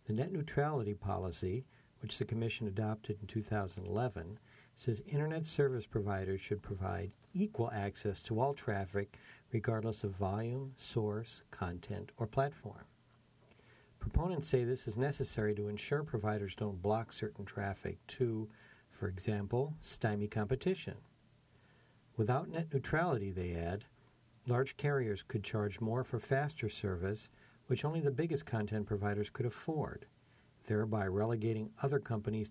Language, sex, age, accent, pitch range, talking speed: English, male, 60-79, American, 105-130 Hz, 130 wpm